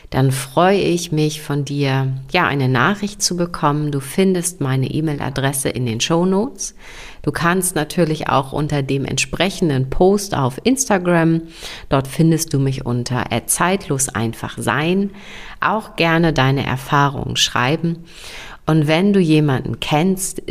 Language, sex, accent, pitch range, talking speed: German, female, German, 125-165 Hz, 135 wpm